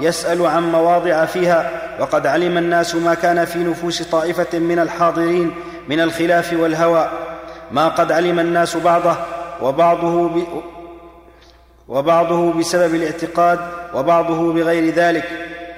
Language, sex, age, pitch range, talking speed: Arabic, male, 40-59, 170-175 Hz, 115 wpm